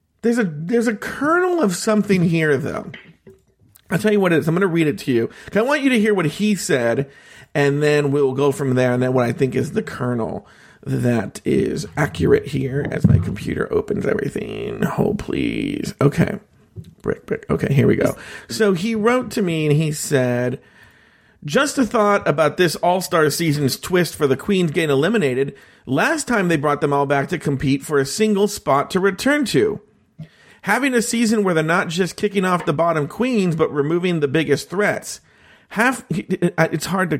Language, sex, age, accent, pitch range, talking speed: English, male, 40-59, American, 145-210 Hz, 195 wpm